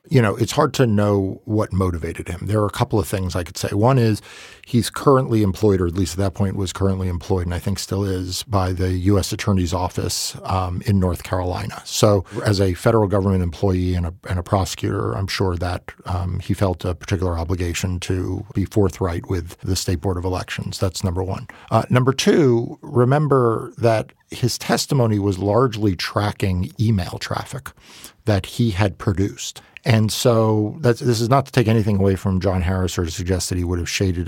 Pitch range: 90-110 Hz